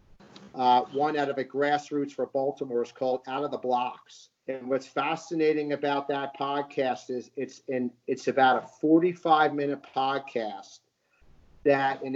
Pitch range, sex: 125-145 Hz, male